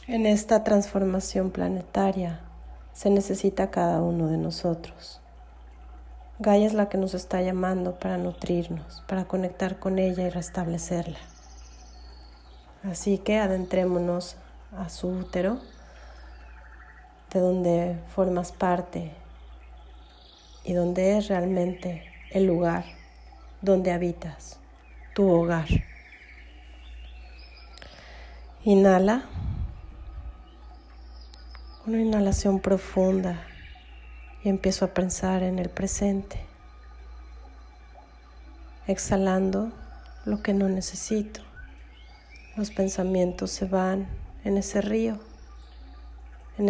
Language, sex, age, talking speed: Spanish, female, 30-49, 90 wpm